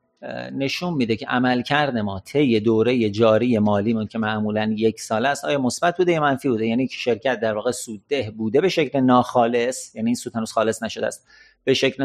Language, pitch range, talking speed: Persian, 115-145 Hz, 200 wpm